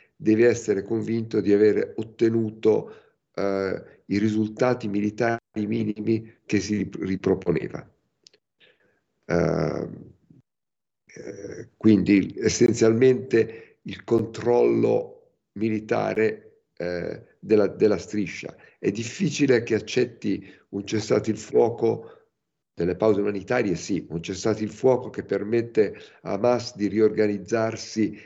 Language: Italian